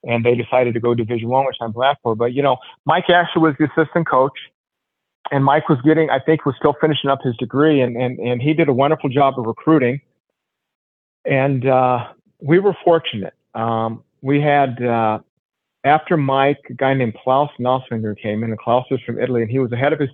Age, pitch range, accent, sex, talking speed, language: 50-69, 115-135 Hz, American, male, 215 wpm, English